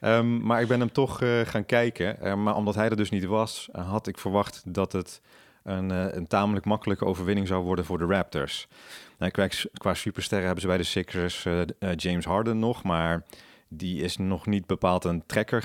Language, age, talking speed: Dutch, 30-49, 210 wpm